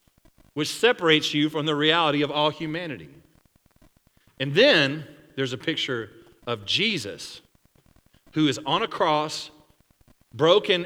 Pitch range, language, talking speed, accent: 115-150 Hz, English, 120 wpm, American